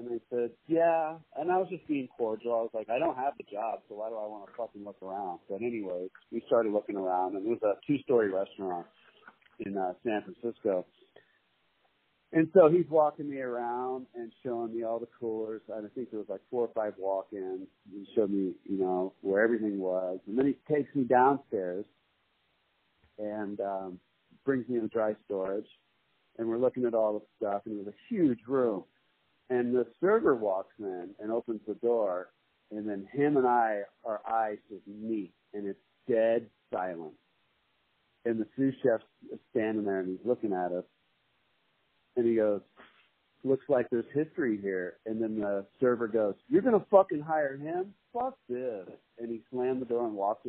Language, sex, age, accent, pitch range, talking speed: English, male, 50-69, American, 105-130 Hz, 190 wpm